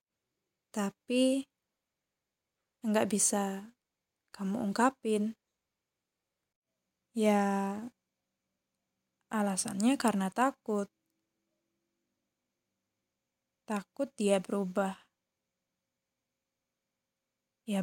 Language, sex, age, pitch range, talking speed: Indonesian, female, 20-39, 200-235 Hz, 45 wpm